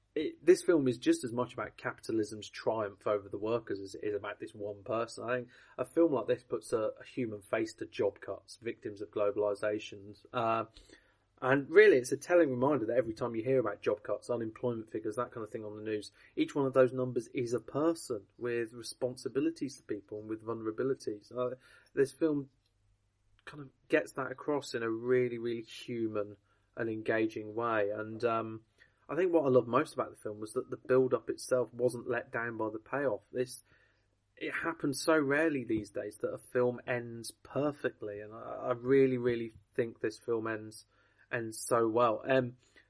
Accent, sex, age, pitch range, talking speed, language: British, male, 30-49, 110-130 Hz, 195 wpm, English